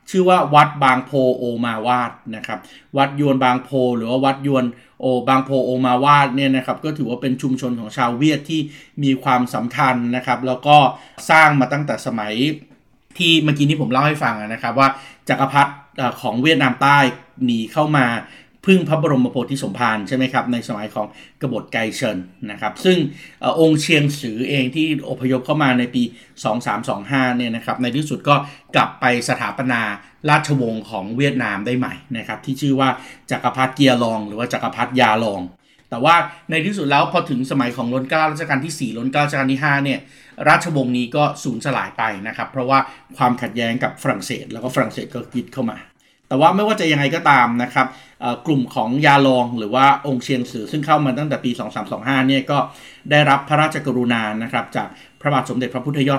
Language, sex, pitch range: Thai, male, 125-145 Hz